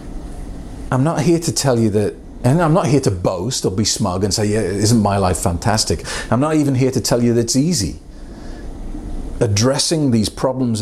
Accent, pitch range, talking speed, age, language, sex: British, 95-120 Hz, 200 wpm, 40-59, English, male